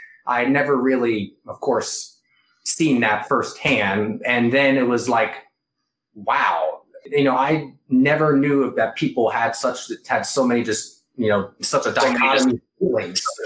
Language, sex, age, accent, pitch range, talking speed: English, male, 20-39, American, 115-135 Hz, 145 wpm